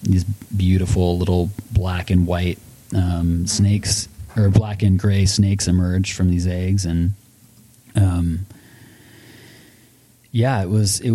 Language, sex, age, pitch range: English, male, 20-39, 95-110 Hz